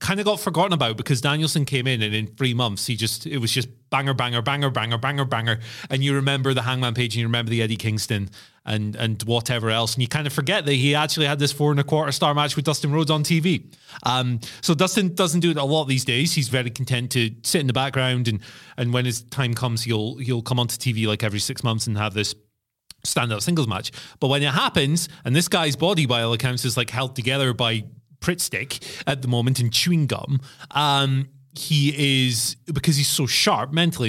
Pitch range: 115-145 Hz